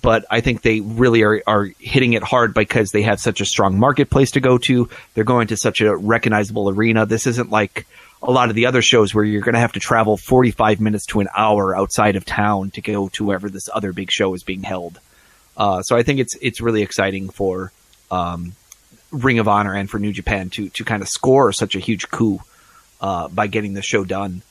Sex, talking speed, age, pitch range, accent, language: male, 230 wpm, 30-49, 100-120 Hz, American, English